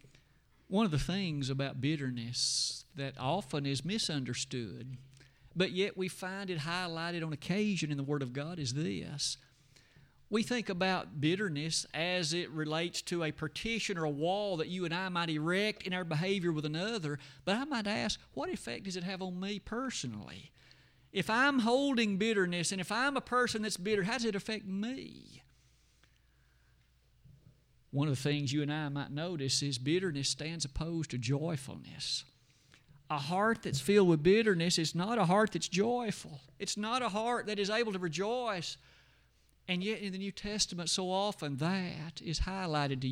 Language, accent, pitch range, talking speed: English, American, 145-200 Hz, 175 wpm